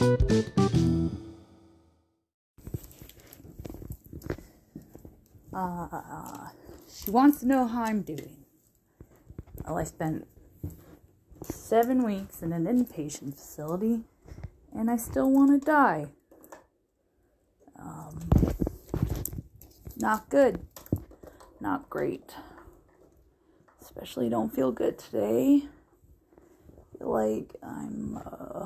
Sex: female